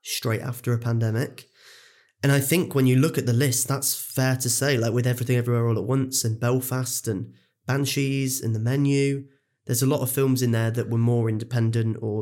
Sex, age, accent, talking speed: male, 20-39, British, 210 wpm